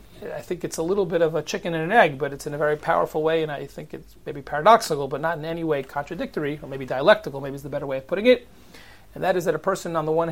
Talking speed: 295 wpm